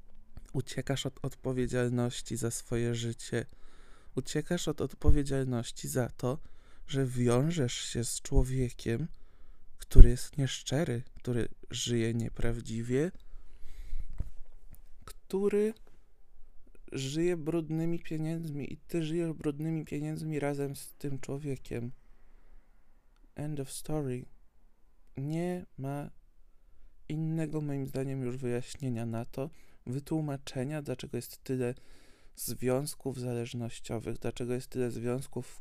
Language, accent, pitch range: Polish, native, 120-150 Hz